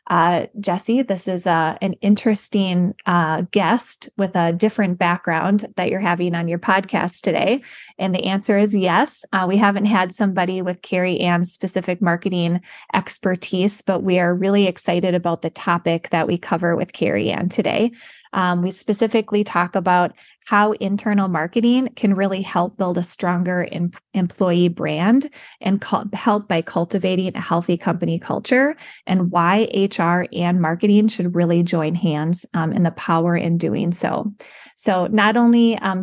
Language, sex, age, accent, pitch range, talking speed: English, female, 20-39, American, 175-210 Hz, 165 wpm